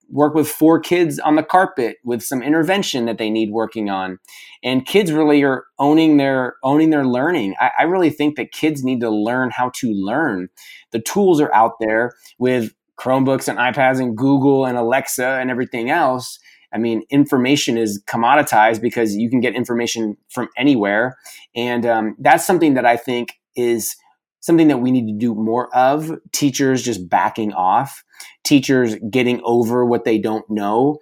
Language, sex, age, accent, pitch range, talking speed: English, male, 30-49, American, 115-145 Hz, 175 wpm